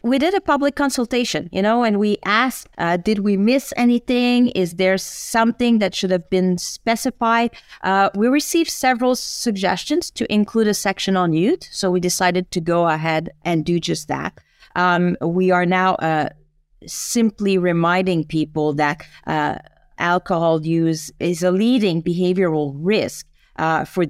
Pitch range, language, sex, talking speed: 170-210 Hz, English, female, 155 wpm